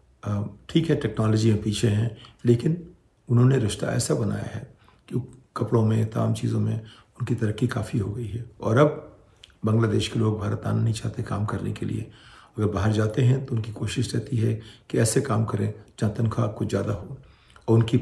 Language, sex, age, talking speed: Hindi, male, 50-69, 190 wpm